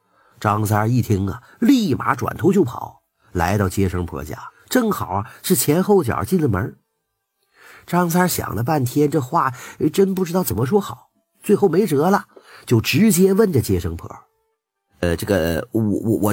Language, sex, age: Chinese, male, 50-69